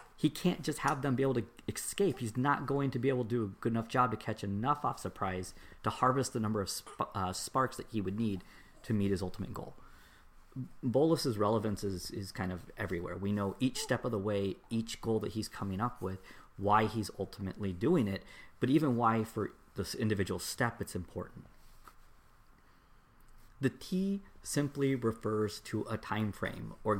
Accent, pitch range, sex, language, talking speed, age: American, 100-130 Hz, male, English, 190 wpm, 40-59